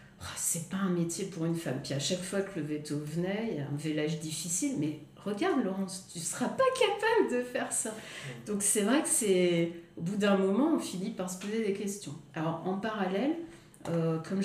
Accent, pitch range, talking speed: French, 150-190 Hz, 220 wpm